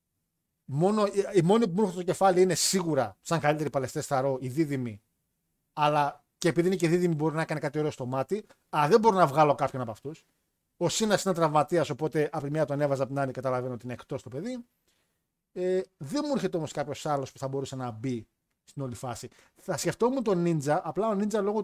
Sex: male